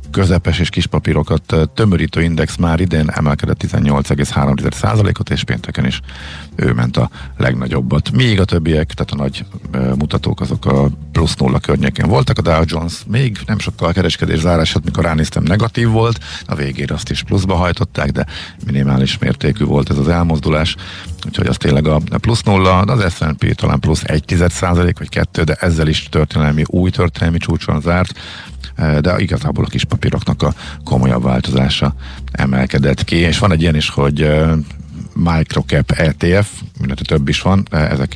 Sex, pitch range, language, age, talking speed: male, 75-90 Hz, Hungarian, 50-69, 155 wpm